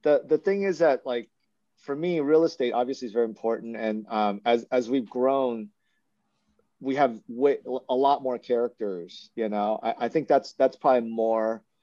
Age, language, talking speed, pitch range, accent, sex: 40-59, English, 185 wpm, 110-145 Hz, American, male